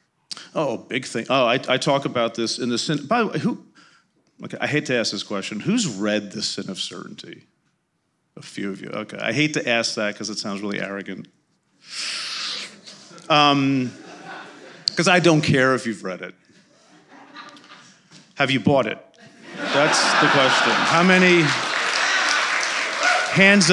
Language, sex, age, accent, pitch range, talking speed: English, male, 40-59, American, 110-165 Hz, 155 wpm